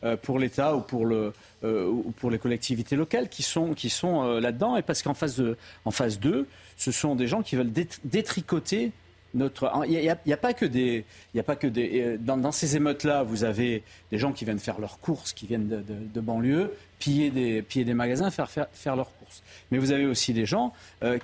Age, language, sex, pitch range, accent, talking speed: 40-59, French, male, 115-150 Hz, French, 225 wpm